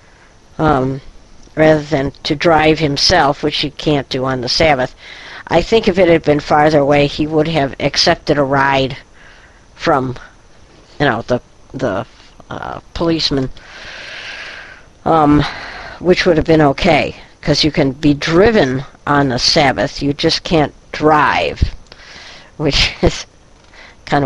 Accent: American